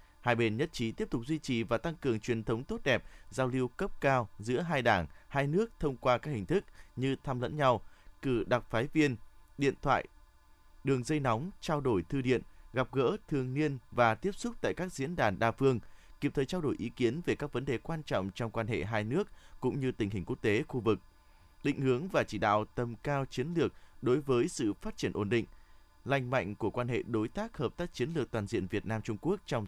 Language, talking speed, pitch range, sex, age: Vietnamese, 235 wpm, 105-140 Hz, male, 20-39